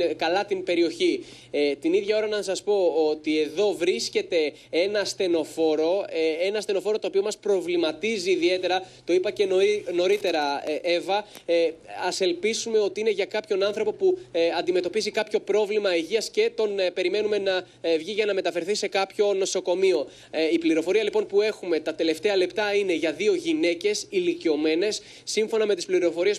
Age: 20-39